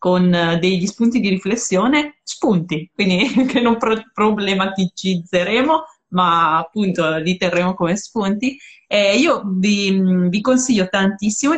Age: 20-39